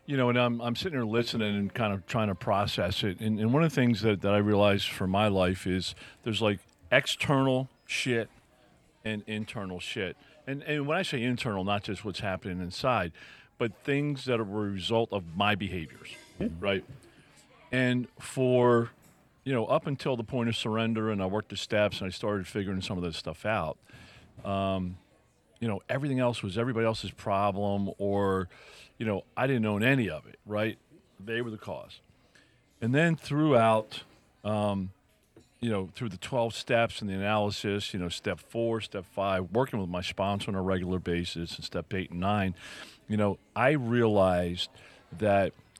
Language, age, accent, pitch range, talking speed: English, 40-59, American, 95-120 Hz, 185 wpm